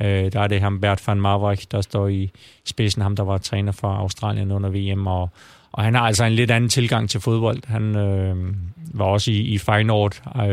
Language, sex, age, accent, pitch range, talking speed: Danish, male, 30-49, native, 95-110 Hz, 215 wpm